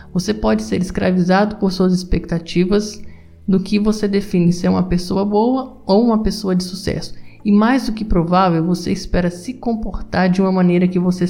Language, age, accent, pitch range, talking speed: Portuguese, 50-69, Brazilian, 180-210 Hz, 180 wpm